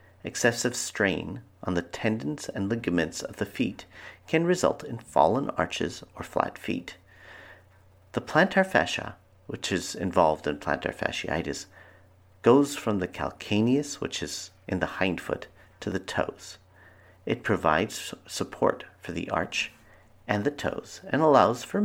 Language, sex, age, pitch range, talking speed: English, male, 50-69, 90-115 Hz, 145 wpm